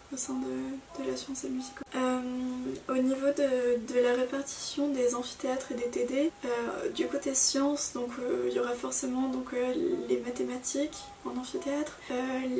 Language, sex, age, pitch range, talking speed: French, female, 20-39, 240-265 Hz, 165 wpm